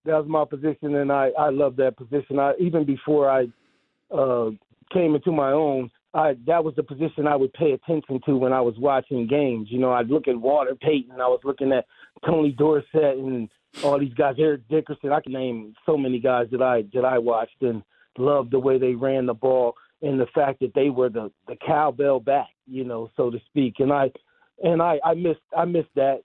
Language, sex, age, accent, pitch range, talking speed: English, male, 40-59, American, 130-155 Hz, 220 wpm